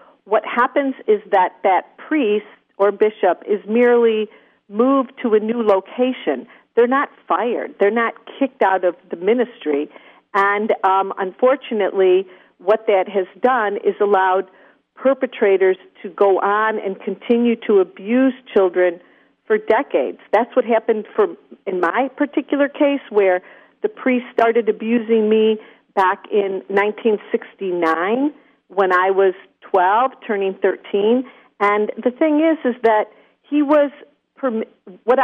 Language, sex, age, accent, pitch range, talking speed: English, female, 50-69, American, 195-250 Hz, 130 wpm